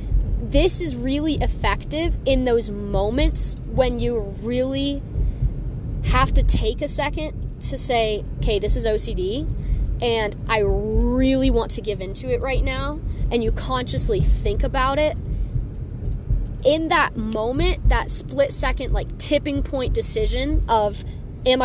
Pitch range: 205-265 Hz